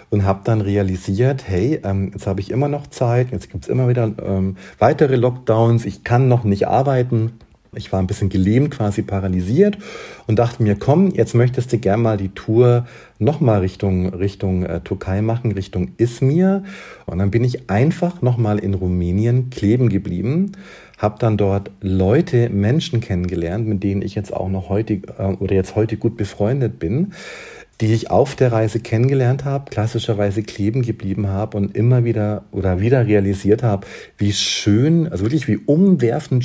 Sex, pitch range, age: male, 100-125 Hz, 50-69